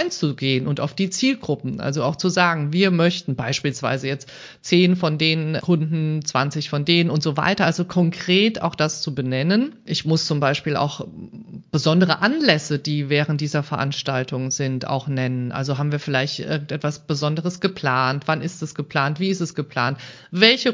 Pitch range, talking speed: 140-180 Hz, 170 wpm